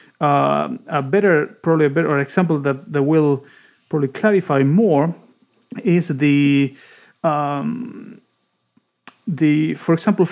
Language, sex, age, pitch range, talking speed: English, male, 40-59, 155-205 Hz, 110 wpm